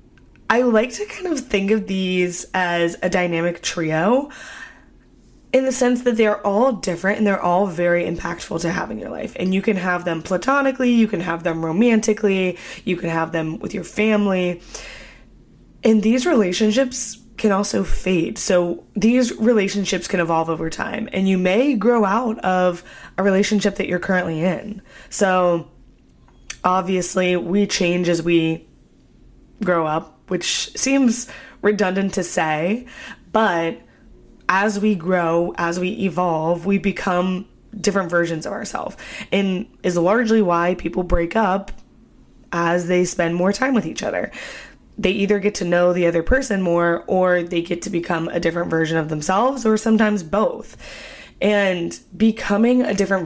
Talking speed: 155 wpm